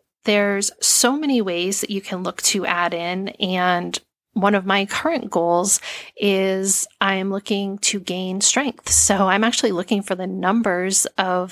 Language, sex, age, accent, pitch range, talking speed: English, female, 30-49, American, 180-225 Hz, 160 wpm